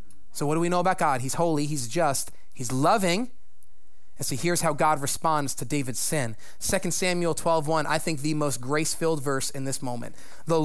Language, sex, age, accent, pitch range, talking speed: English, male, 30-49, American, 120-170 Hz, 205 wpm